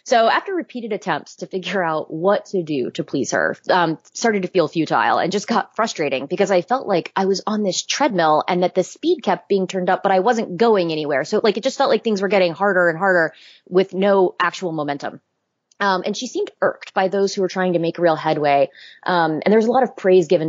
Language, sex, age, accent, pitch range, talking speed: English, female, 20-39, American, 155-195 Hz, 240 wpm